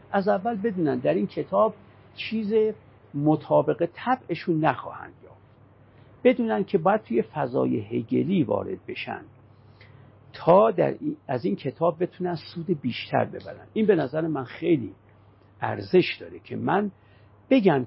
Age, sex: 50-69, male